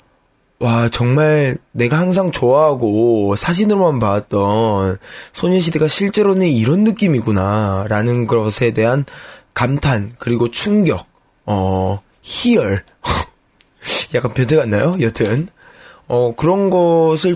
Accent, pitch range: native, 110-165 Hz